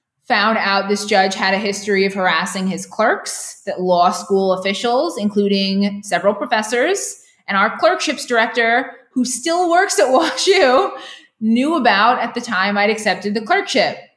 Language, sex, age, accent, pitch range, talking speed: English, female, 20-39, American, 180-220 Hz, 155 wpm